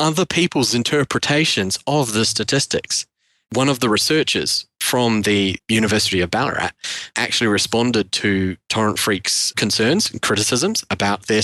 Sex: male